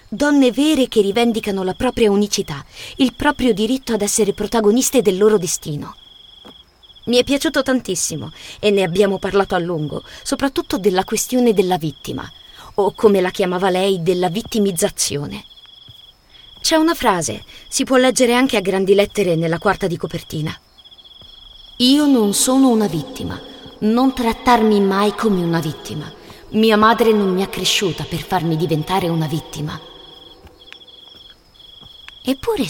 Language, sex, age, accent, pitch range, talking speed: Italian, female, 30-49, native, 175-240 Hz, 140 wpm